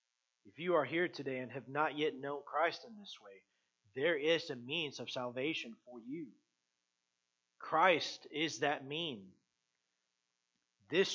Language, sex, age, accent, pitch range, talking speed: English, male, 30-49, American, 130-185 Hz, 145 wpm